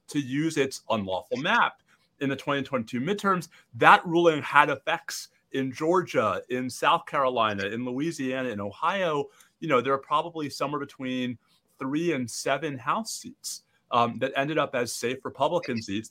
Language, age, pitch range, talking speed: English, 30-49, 120-160 Hz, 155 wpm